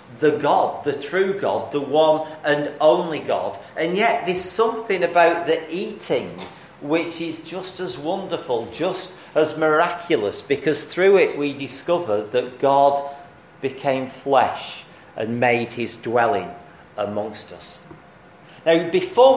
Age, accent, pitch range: 40-59, British, 145-190 Hz